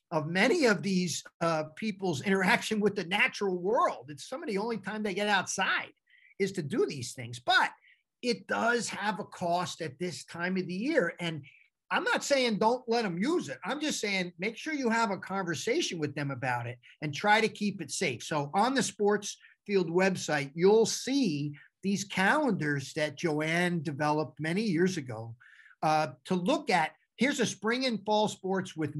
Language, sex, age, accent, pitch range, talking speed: English, male, 50-69, American, 160-215 Hz, 190 wpm